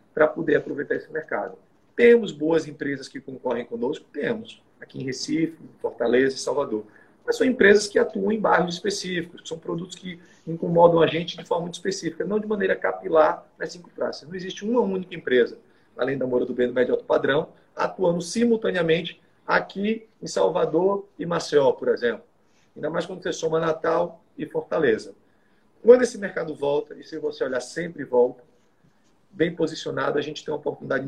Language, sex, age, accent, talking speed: Portuguese, male, 40-59, Brazilian, 175 wpm